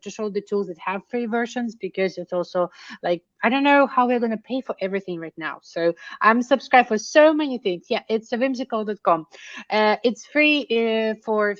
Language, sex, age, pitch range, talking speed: English, female, 30-49, 185-230 Hz, 200 wpm